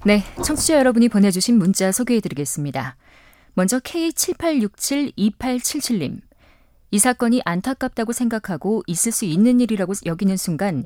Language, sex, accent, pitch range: Korean, female, native, 180-255 Hz